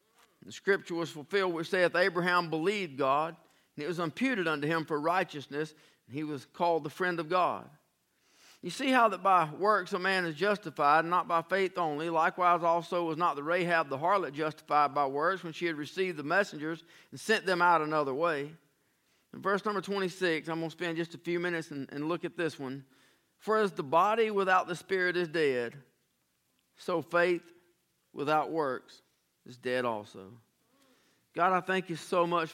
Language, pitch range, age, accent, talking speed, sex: English, 155-185 Hz, 40-59, American, 190 wpm, male